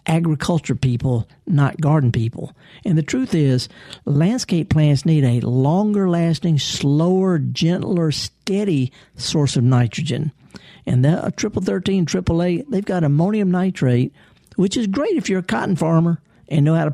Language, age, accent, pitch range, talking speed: English, 50-69, American, 135-175 Hz, 155 wpm